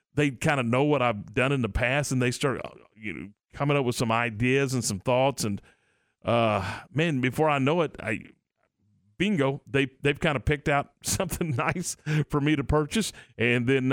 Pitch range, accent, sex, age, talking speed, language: 120-155 Hz, American, male, 40-59, 200 wpm, English